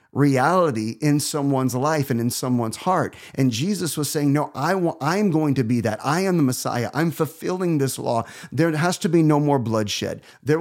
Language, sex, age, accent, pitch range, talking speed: English, male, 30-49, American, 135-175 Hz, 205 wpm